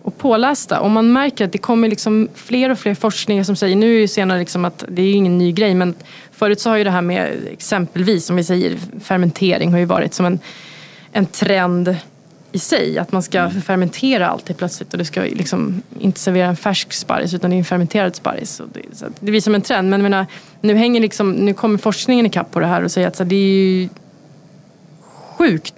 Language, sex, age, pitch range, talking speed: English, female, 20-39, 180-205 Hz, 225 wpm